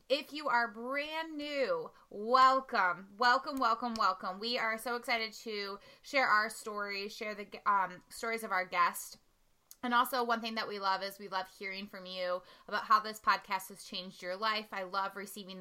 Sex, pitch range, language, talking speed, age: female, 205-260 Hz, English, 185 wpm, 20-39